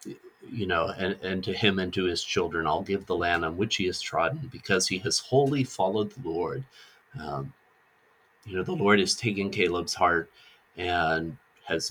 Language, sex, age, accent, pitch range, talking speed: English, male, 30-49, American, 95-125 Hz, 185 wpm